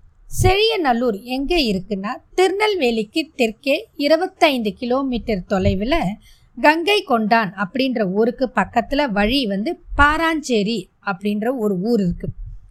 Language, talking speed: Tamil, 100 wpm